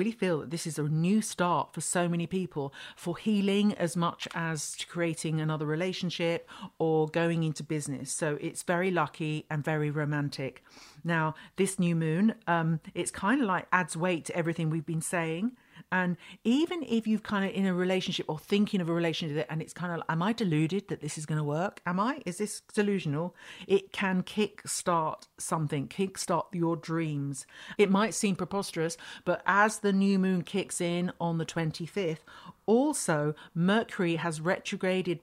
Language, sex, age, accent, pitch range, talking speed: English, female, 50-69, British, 160-185 Hz, 180 wpm